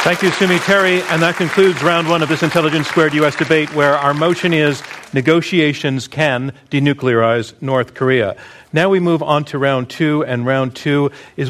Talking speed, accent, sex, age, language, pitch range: 185 wpm, American, male, 50-69, English, 125-155 Hz